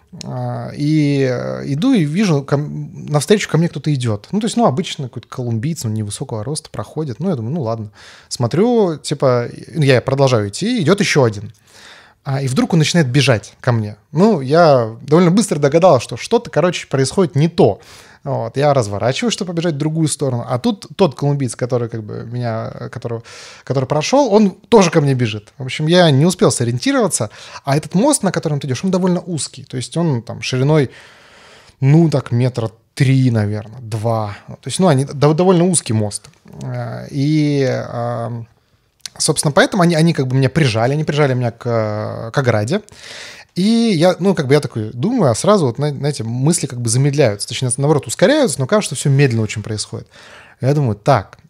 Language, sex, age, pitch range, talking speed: Russian, male, 20-39, 120-160 Hz, 180 wpm